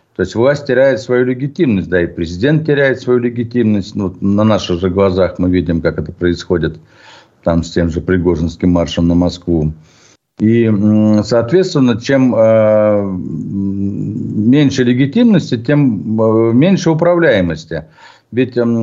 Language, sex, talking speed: Russian, male, 125 wpm